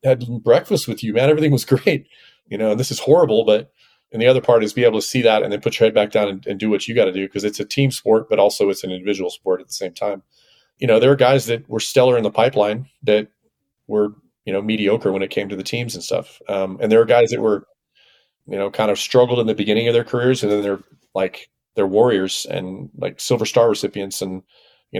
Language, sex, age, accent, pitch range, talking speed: English, male, 30-49, American, 100-130 Hz, 265 wpm